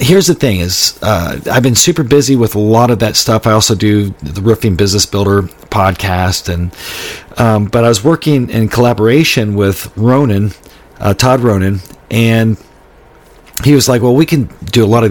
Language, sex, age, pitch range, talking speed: English, male, 40-59, 100-130 Hz, 185 wpm